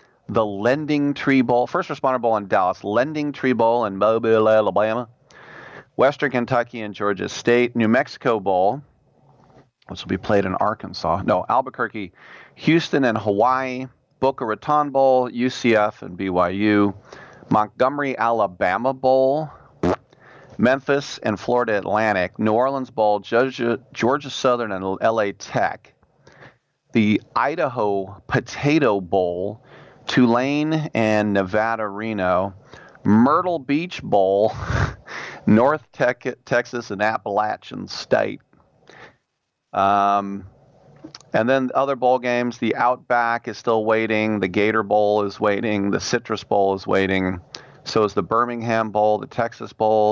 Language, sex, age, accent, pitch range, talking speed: English, male, 40-59, American, 105-130 Hz, 120 wpm